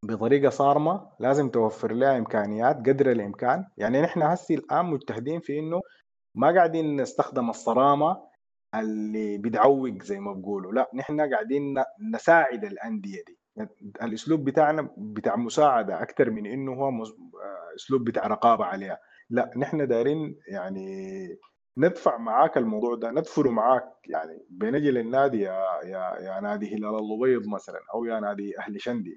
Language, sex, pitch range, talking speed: Arabic, male, 110-150 Hz, 145 wpm